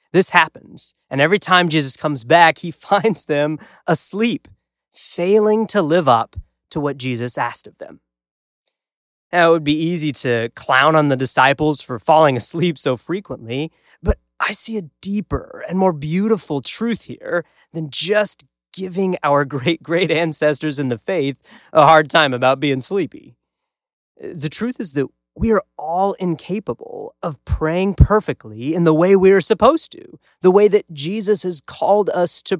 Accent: American